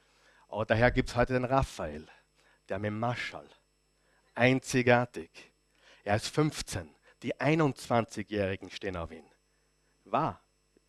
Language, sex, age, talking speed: German, male, 50-69, 115 wpm